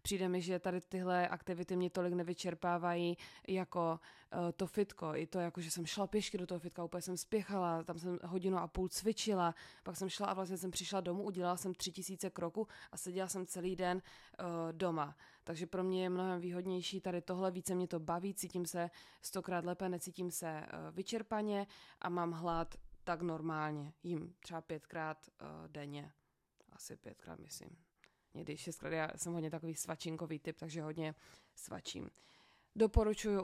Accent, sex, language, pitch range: native, female, Czech, 165-185 Hz